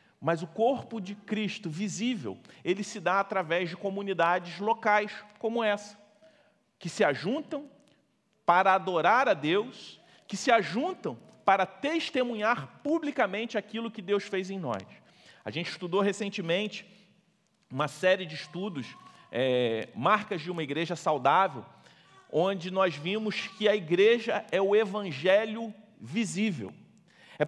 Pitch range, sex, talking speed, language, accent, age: 190-240 Hz, male, 125 wpm, Portuguese, Brazilian, 40-59